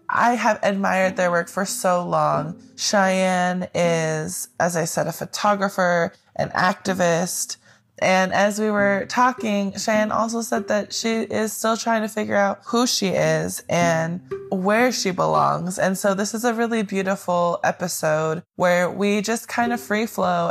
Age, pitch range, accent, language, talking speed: 20-39, 165-205 Hz, American, English, 160 wpm